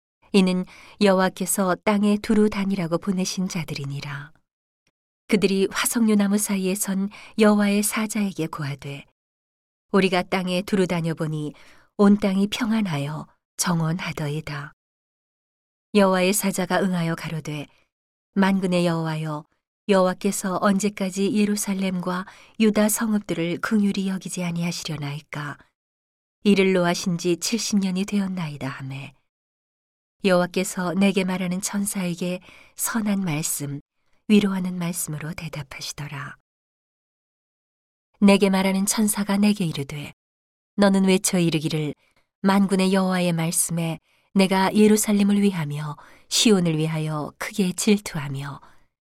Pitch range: 160-200 Hz